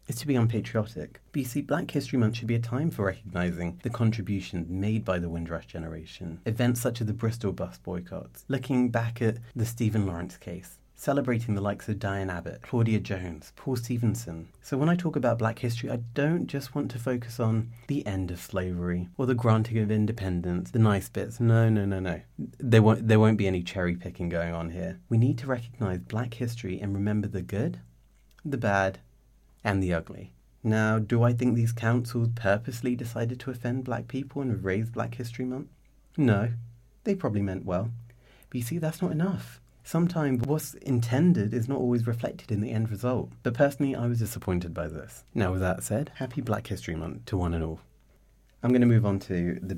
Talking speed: 200 wpm